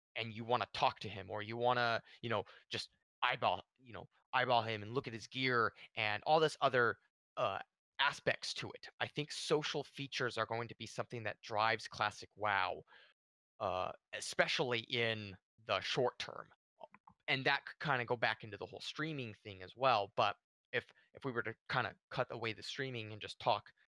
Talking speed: 200 wpm